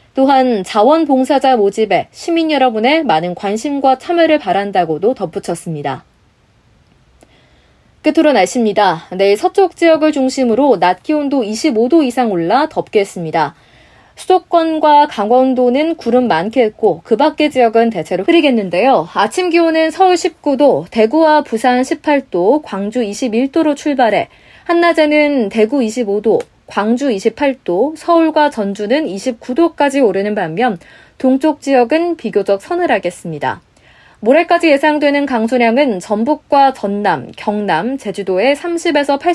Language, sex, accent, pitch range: Korean, female, native, 205-300 Hz